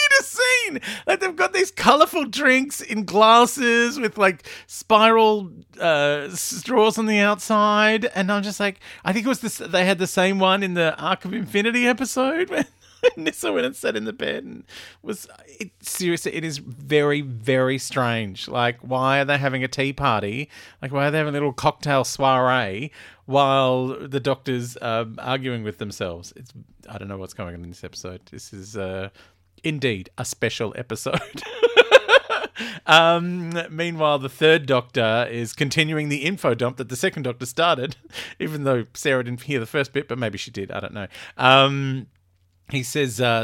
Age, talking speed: 40-59, 180 wpm